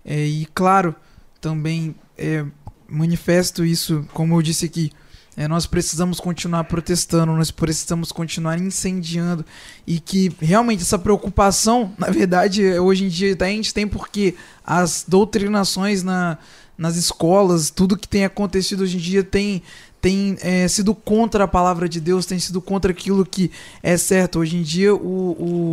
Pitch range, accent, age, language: 170-200 Hz, Brazilian, 20-39, Portuguese